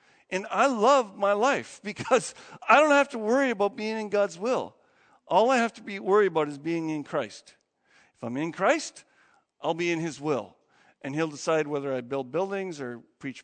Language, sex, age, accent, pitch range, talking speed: English, male, 50-69, American, 150-210 Hz, 200 wpm